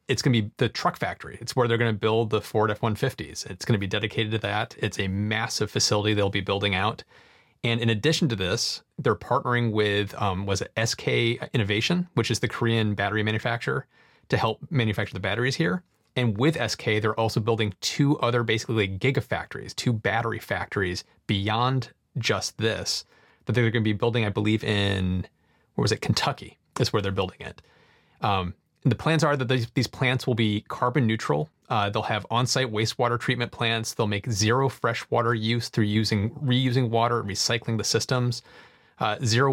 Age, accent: 30-49, American